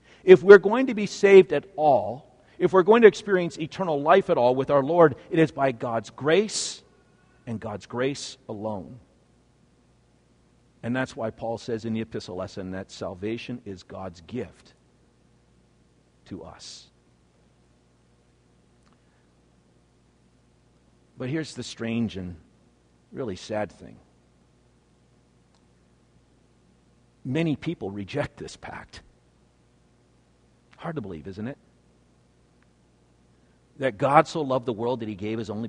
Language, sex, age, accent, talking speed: English, male, 50-69, American, 125 wpm